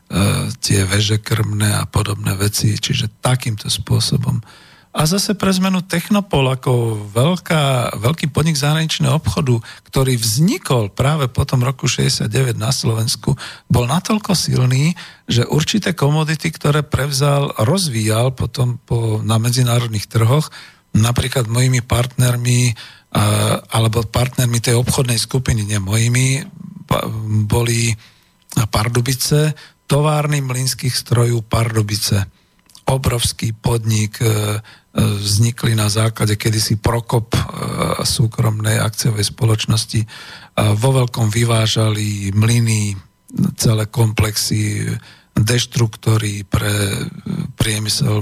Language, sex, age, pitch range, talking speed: Slovak, male, 50-69, 110-135 Hz, 95 wpm